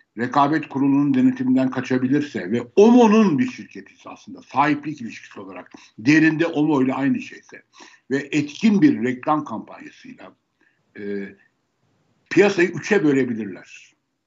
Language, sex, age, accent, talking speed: Turkish, male, 60-79, native, 110 wpm